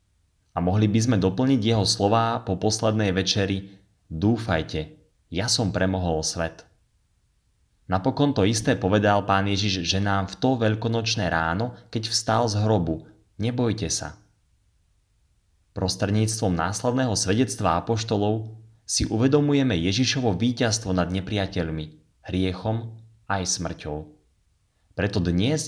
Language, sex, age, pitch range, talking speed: Slovak, male, 30-49, 90-110 Hz, 110 wpm